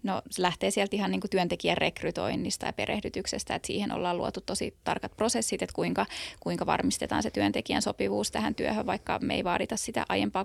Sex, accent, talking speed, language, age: female, native, 185 wpm, Finnish, 20-39